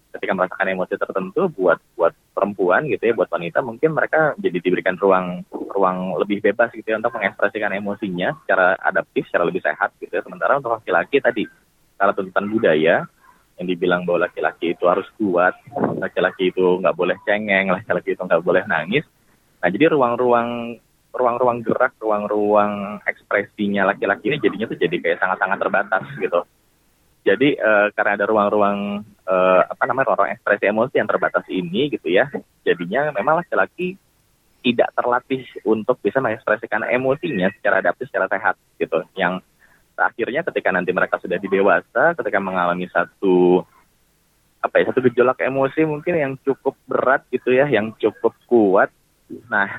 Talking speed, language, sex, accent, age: 150 wpm, Indonesian, male, native, 20-39